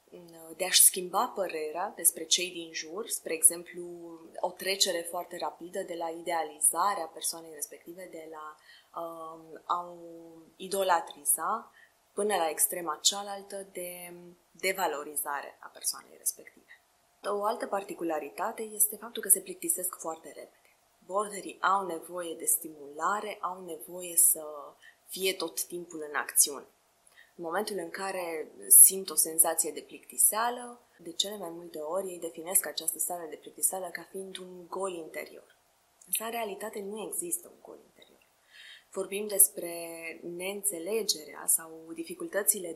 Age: 20-39